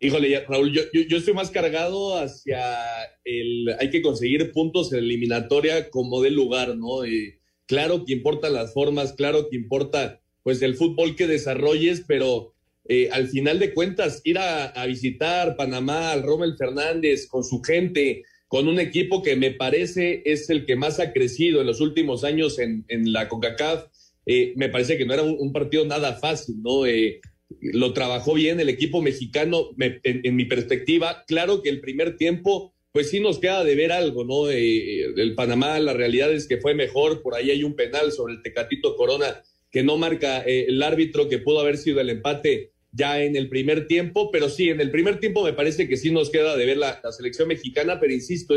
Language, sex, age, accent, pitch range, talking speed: Spanish, male, 40-59, Mexican, 130-170 Hz, 200 wpm